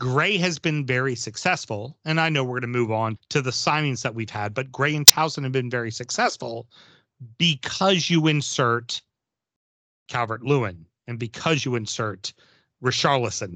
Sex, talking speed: male, 160 wpm